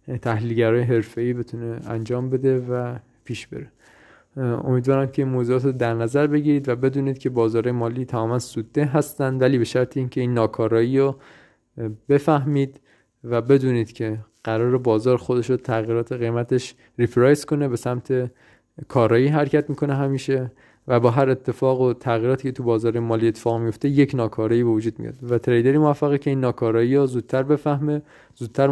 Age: 20-39